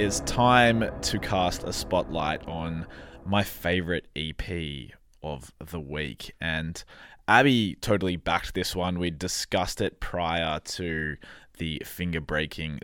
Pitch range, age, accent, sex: 85-110 Hz, 20-39, Australian, male